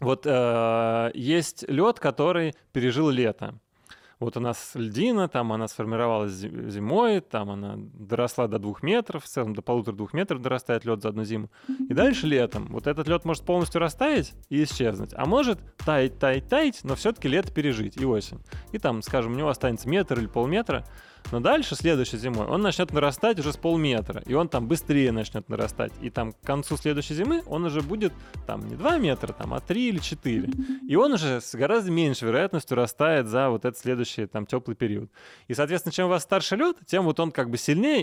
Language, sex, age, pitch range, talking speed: Russian, male, 20-39, 115-165 Hz, 195 wpm